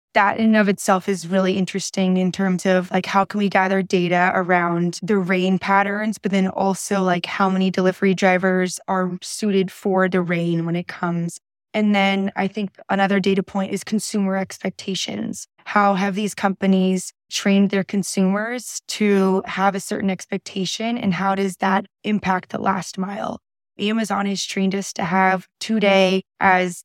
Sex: female